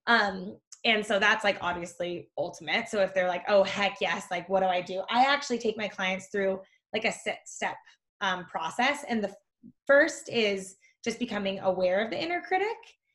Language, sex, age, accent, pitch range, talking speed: English, female, 20-39, American, 190-230 Hz, 185 wpm